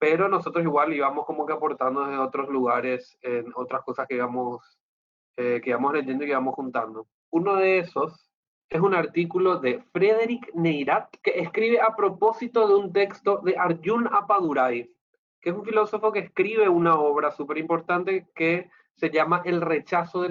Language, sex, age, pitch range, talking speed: Spanish, male, 30-49, 150-205 Hz, 170 wpm